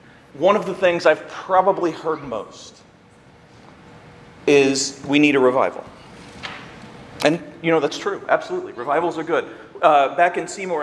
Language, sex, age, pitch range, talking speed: English, male, 40-59, 160-210 Hz, 145 wpm